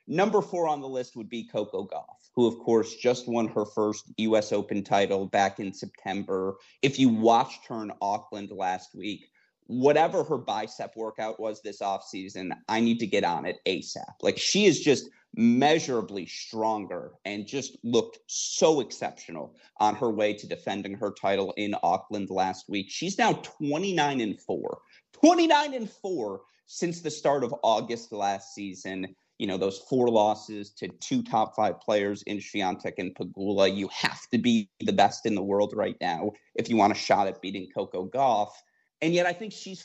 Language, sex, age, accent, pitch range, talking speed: English, male, 30-49, American, 100-130 Hz, 185 wpm